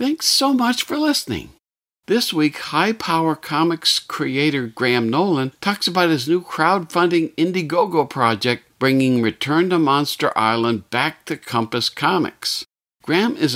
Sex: male